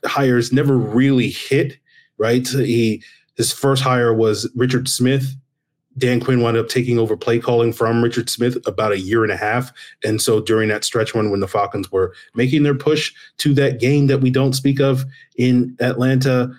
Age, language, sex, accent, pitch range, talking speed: 30-49, English, male, American, 115-130 Hz, 190 wpm